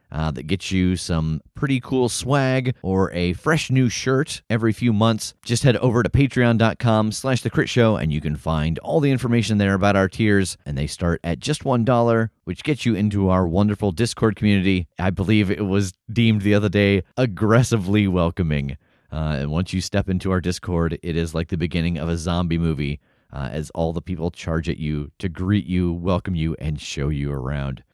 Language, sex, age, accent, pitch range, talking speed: English, male, 30-49, American, 85-110 Hz, 205 wpm